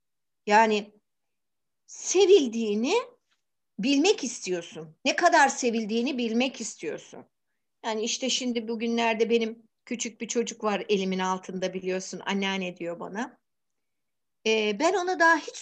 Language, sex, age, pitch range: Turkish, female, 60-79, 220-350 Hz